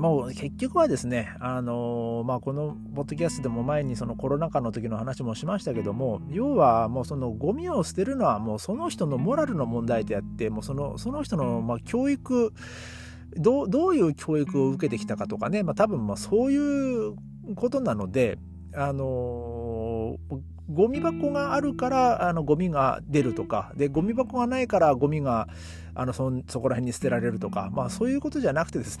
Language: Japanese